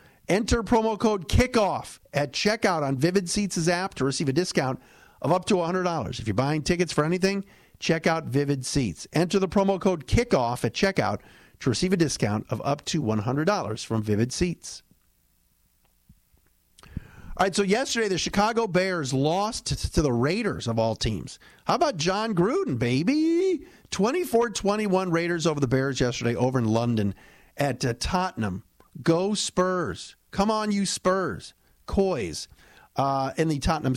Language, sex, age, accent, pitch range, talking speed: English, male, 50-69, American, 125-195 Hz, 155 wpm